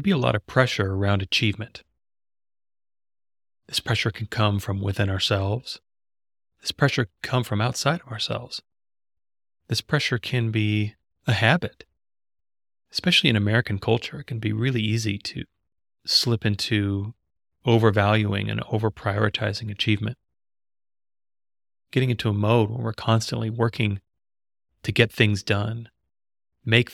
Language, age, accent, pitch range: English, 30-49, American, 100-115 Hz